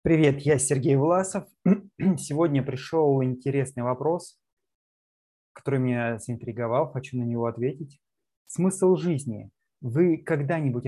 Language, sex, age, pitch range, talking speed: Russian, male, 20-39, 120-145 Hz, 105 wpm